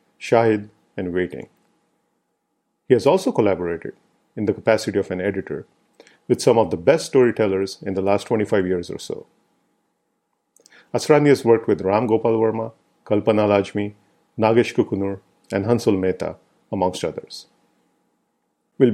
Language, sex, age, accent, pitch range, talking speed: English, male, 50-69, Indian, 95-115 Hz, 135 wpm